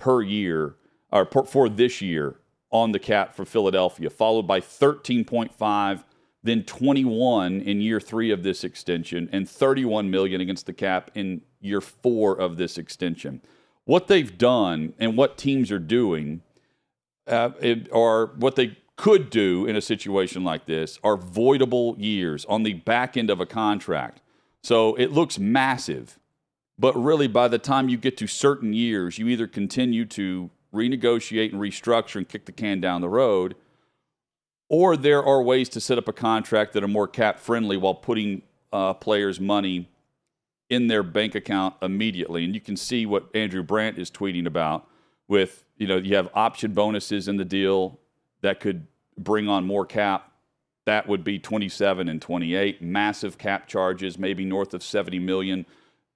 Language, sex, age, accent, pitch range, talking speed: English, male, 40-59, American, 95-115 Hz, 165 wpm